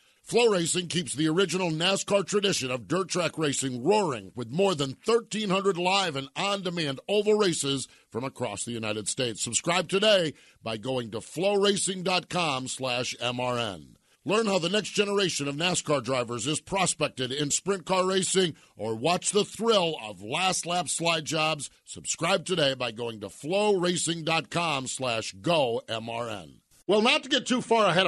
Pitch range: 140-195 Hz